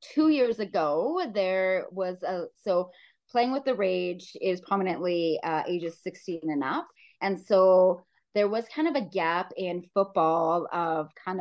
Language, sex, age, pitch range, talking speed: English, female, 30-49, 165-195 Hz, 160 wpm